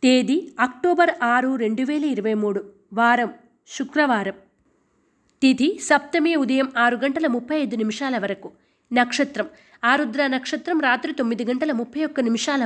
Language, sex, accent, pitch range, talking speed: Telugu, female, native, 235-290 Hz, 125 wpm